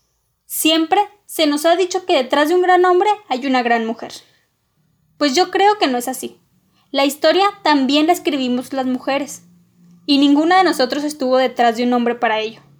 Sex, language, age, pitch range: female, Spanish, 10-29, 245-310 Hz